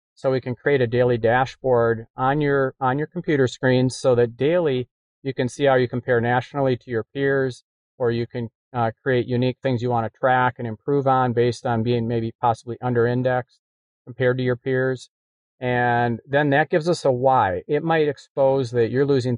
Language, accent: English, American